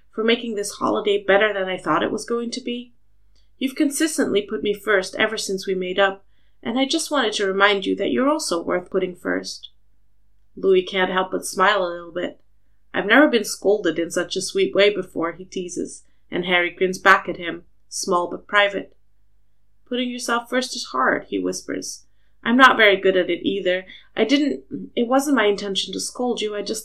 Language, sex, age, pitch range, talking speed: English, female, 30-49, 170-220 Hz, 200 wpm